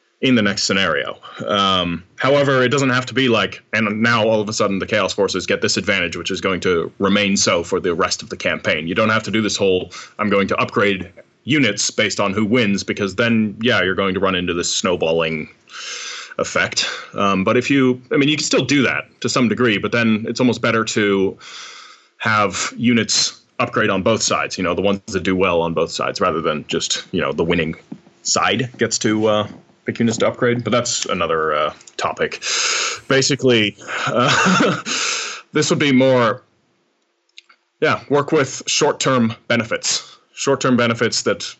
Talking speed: 190 wpm